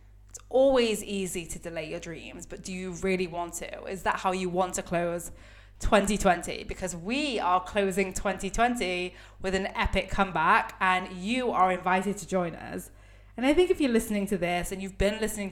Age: 20-39